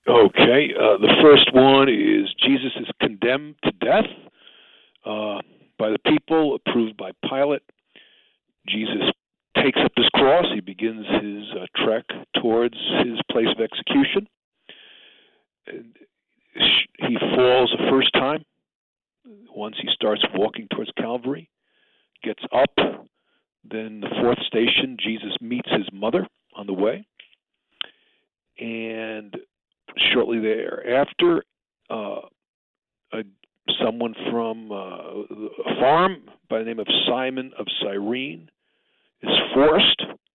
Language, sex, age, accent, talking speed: English, male, 50-69, American, 110 wpm